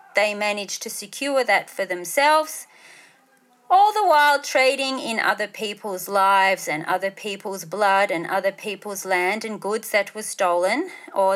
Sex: female